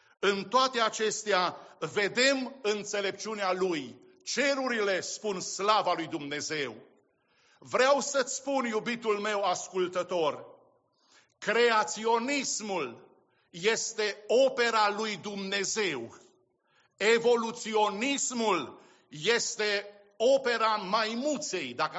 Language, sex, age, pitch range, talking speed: English, male, 50-69, 205-255 Hz, 75 wpm